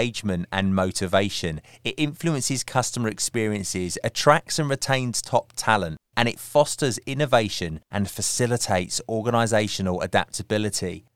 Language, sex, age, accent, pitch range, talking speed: English, male, 20-39, British, 100-125 Hz, 115 wpm